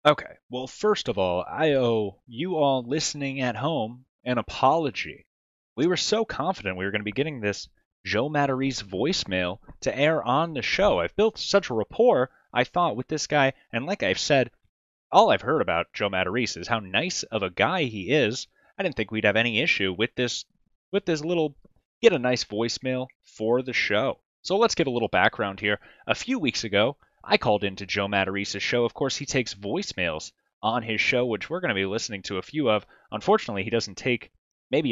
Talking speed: 205 wpm